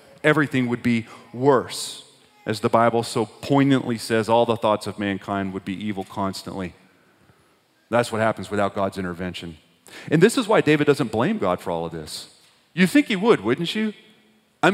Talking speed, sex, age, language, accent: 180 wpm, male, 30-49, English, American